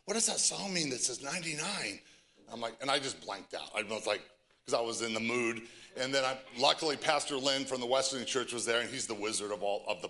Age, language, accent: 40-59, English, American